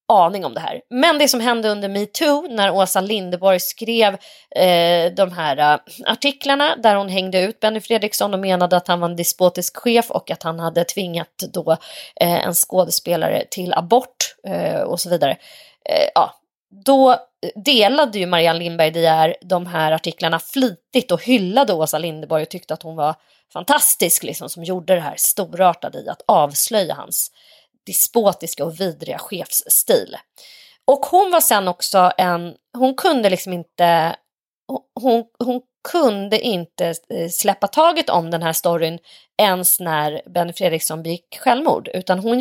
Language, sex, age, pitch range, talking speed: Swedish, female, 30-49, 170-225 Hz, 150 wpm